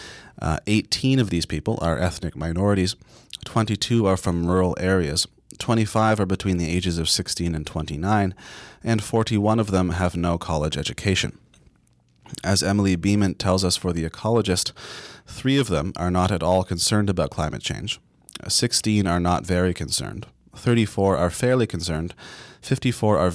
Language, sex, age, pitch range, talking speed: English, male, 30-49, 85-110 Hz, 155 wpm